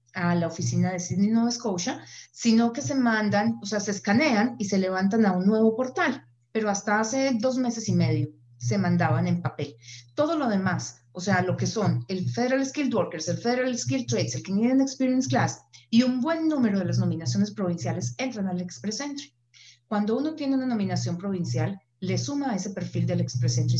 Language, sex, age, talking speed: Spanish, female, 30-49, 195 wpm